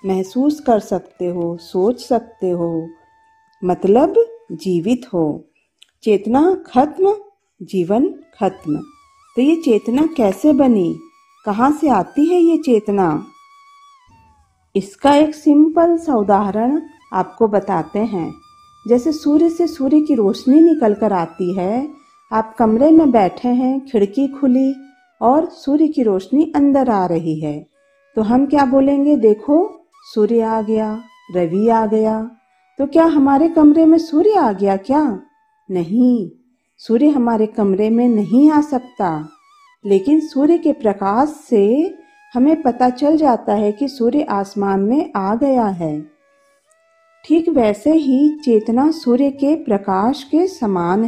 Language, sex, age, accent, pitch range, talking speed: Hindi, female, 50-69, native, 205-305 Hz, 130 wpm